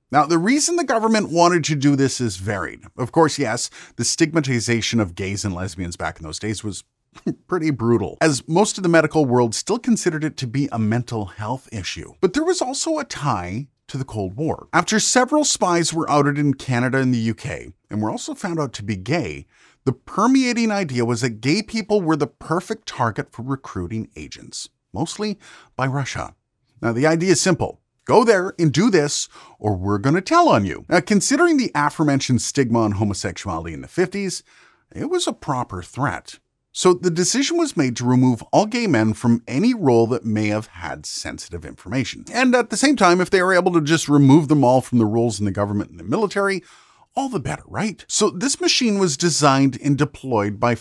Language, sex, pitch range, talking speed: English, male, 115-185 Hz, 205 wpm